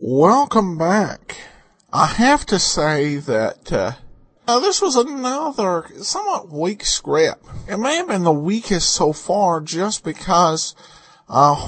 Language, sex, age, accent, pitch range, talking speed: English, male, 50-69, American, 145-210 Hz, 135 wpm